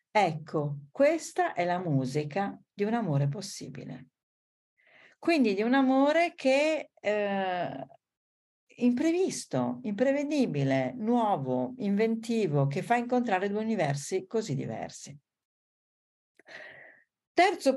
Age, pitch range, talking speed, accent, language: 50-69, 135-220 Hz, 90 wpm, native, Italian